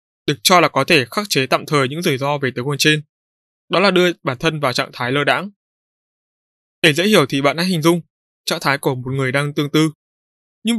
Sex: male